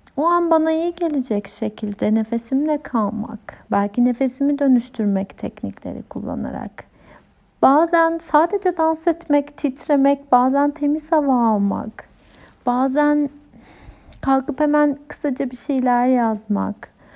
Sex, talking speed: female, 100 wpm